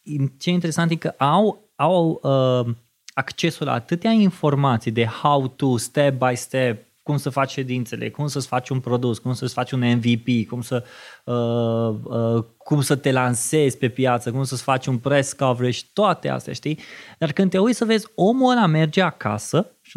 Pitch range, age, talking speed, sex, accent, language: 120-160 Hz, 20-39, 185 wpm, male, native, Romanian